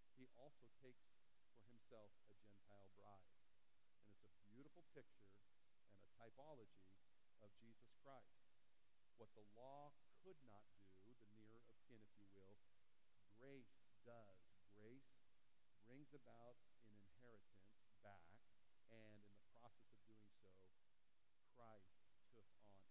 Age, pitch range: 50-69, 105-165 Hz